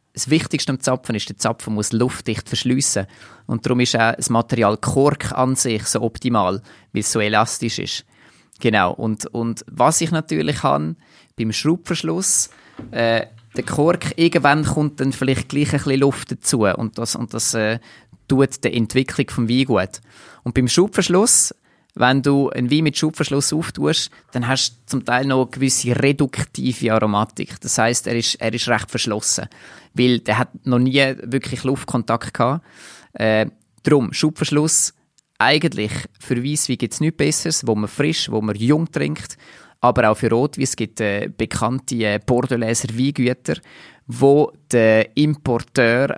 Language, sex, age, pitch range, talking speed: German, male, 20-39, 115-140 Hz, 160 wpm